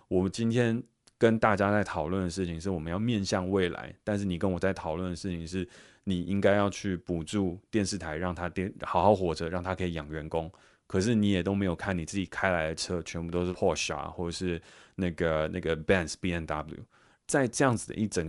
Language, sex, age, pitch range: Chinese, male, 20-39, 80-100 Hz